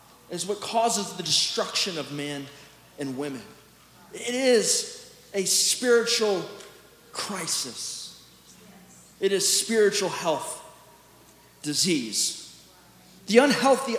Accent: American